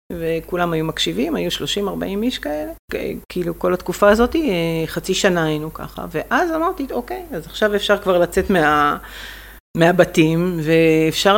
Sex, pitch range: female, 160-215 Hz